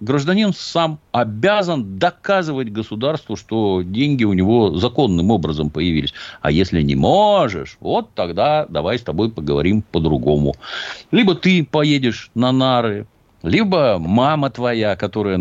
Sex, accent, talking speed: male, native, 125 wpm